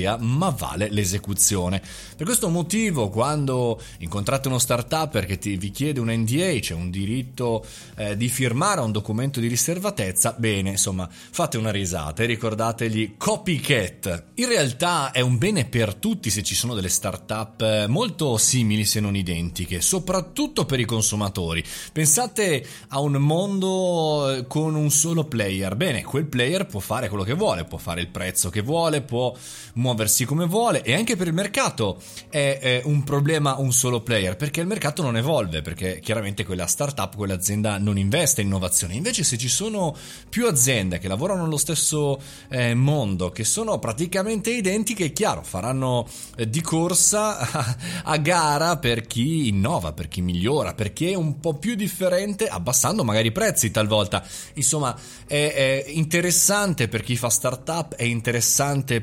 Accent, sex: native, male